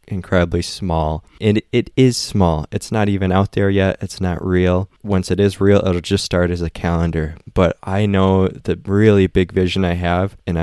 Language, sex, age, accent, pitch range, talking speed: English, male, 20-39, American, 90-100 Hz, 200 wpm